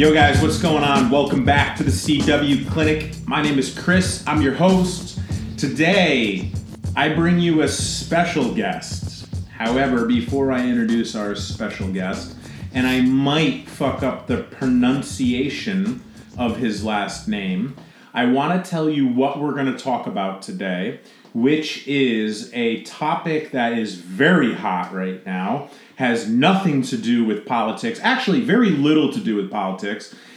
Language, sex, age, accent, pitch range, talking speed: English, male, 30-49, American, 125-190 Hz, 155 wpm